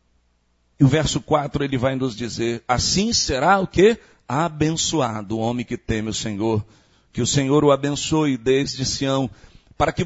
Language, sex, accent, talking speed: Portuguese, male, Brazilian, 165 wpm